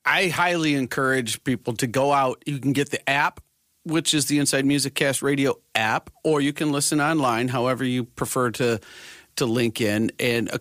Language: English